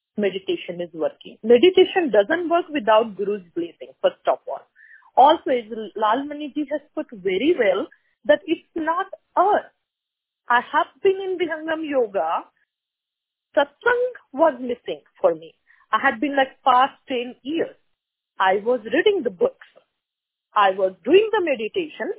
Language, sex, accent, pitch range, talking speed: English, female, Indian, 230-370 Hz, 140 wpm